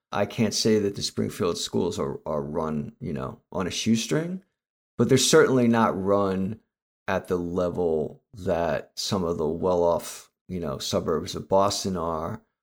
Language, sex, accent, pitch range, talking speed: English, male, American, 95-115 Hz, 160 wpm